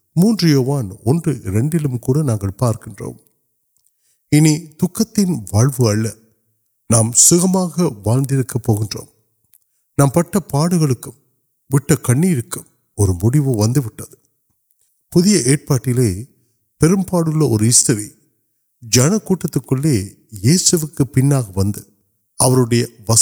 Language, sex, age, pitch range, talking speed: Urdu, male, 50-69, 110-145 Hz, 55 wpm